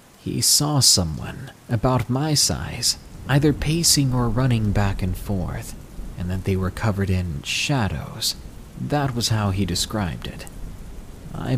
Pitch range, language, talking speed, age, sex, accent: 95-125 Hz, English, 140 wpm, 30-49, male, American